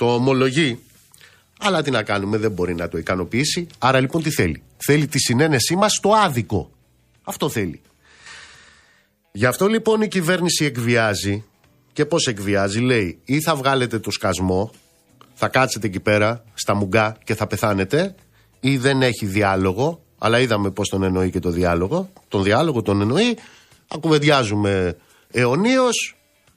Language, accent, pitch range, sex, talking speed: Greek, native, 105-170 Hz, male, 145 wpm